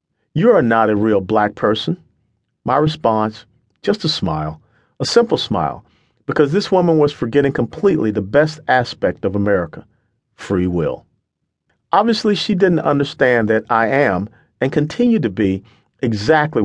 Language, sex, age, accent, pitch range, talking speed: English, male, 50-69, American, 105-150 Hz, 145 wpm